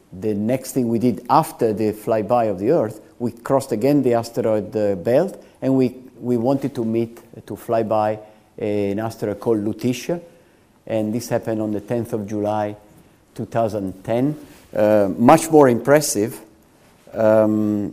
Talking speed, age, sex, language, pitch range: 155 wpm, 50-69, male, English, 105-135 Hz